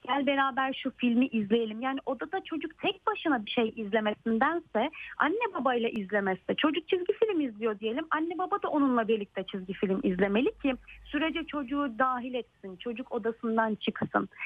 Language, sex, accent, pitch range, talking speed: Turkish, female, native, 225-305 Hz, 155 wpm